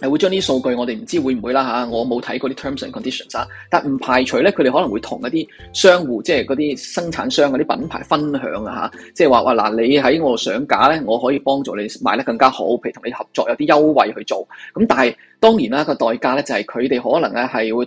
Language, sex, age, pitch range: Chinese, male, 20-39, 130-210 Hz